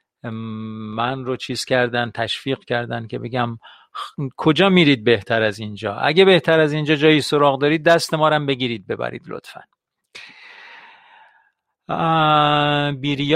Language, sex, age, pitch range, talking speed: Persian, male, 50-69, 125-165 Hz, 130 wpm